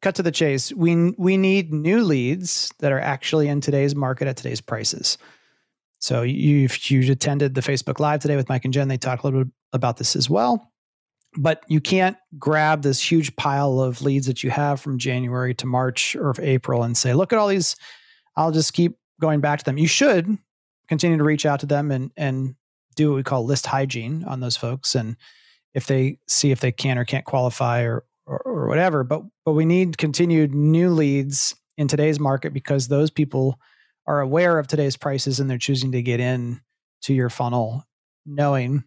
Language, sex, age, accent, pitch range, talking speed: English, male, 30-49, American, 130-155 Hz, 200 wpm